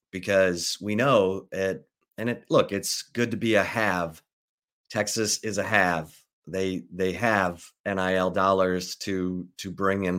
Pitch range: 95-110 Hz